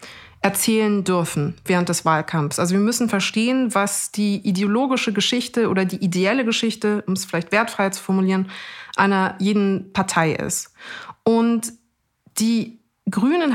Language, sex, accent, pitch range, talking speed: German, female, German, 185-220 Hz, 135 wpm